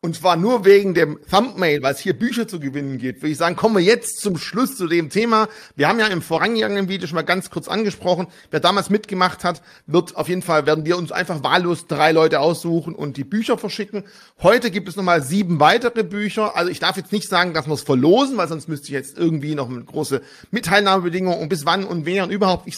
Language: German